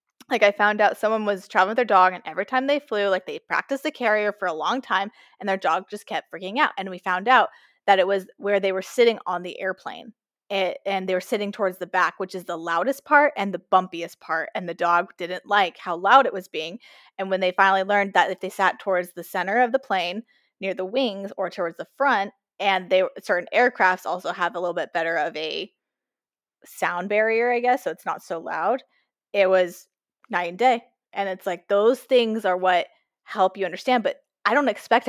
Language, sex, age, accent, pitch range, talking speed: English, female, 20-39, American, 185-250 Hz, 225 wpm